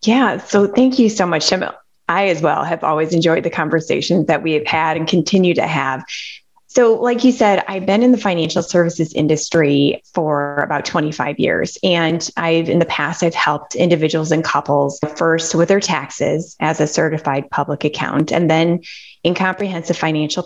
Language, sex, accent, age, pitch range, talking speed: English, female, American, 20-39, 155-205 Hz, 180 wpm